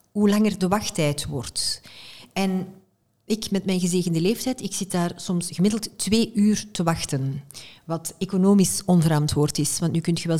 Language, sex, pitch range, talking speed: Dutch, female, 165-200 Hz, 165 wpm